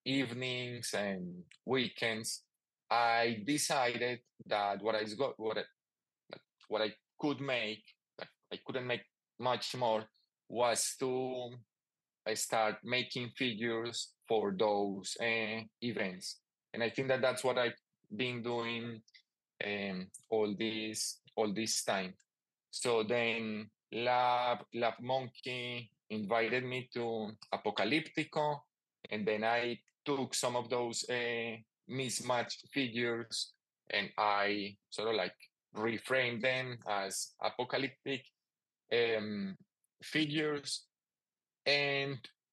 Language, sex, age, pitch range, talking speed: English, male, 30-49, 110-130 Hz, 105 wpm